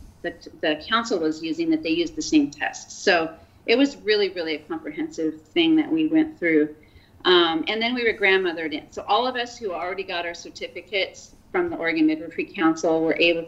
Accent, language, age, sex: American, English, 40-59, female